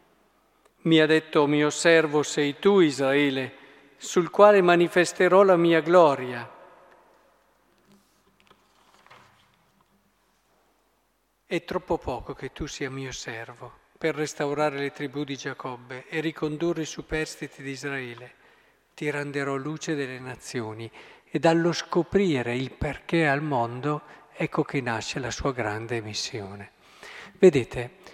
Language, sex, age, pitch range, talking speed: Italian, male, 50-69, 140-205 Hz, 115 wpm